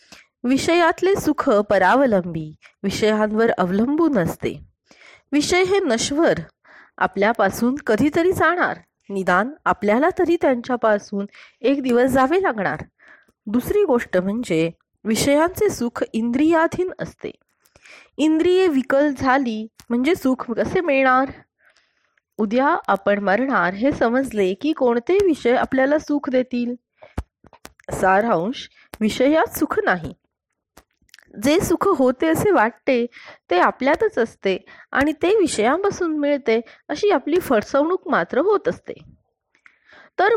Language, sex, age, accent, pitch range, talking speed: Marathi, female, 20-39, native, 220-325 Hz, 100 wpm